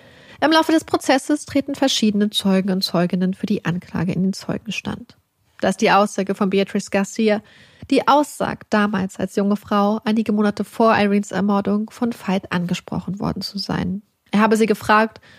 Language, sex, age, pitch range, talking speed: German, female, 30-49, 195-230 Hz, 170 wpm